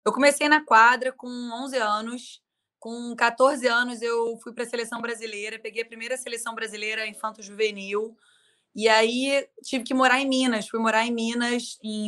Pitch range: 225-275 Hz